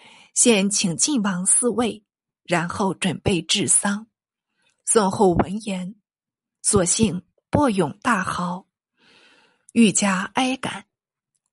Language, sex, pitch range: Chinese, female, 190-235 Hz